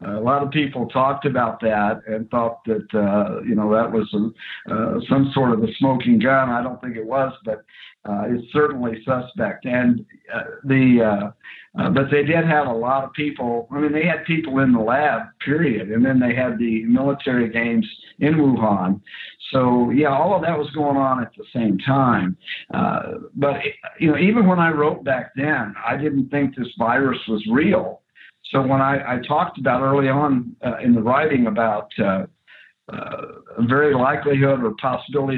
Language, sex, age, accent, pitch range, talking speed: English, male, 60-79, American, 115-145 Hz, 190 wpm